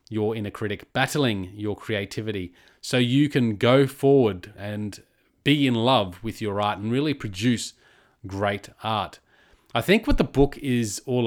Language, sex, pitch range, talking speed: English, male, 105-130 Hz, 160 wpm